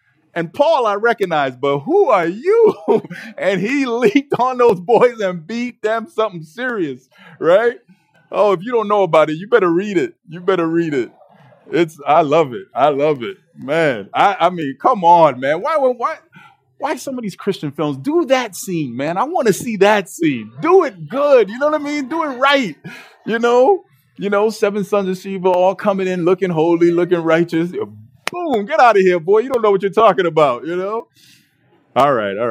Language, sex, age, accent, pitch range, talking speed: English, male, 30-49, American, 130-215 Hz, 205 wpm